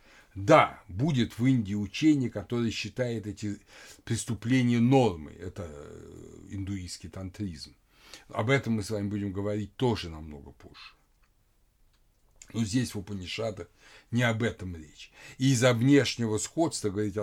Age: 60-79